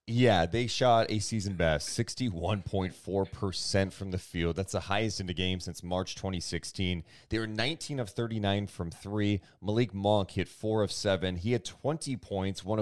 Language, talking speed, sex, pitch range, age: English, 175 wpm, male, 90-115 Hz, 30-49